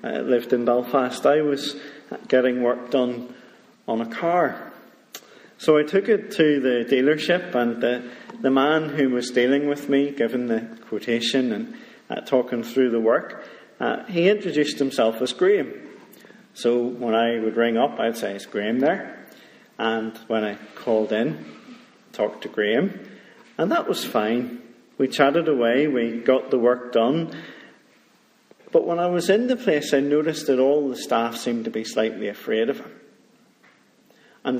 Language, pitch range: English, 115-145 Hz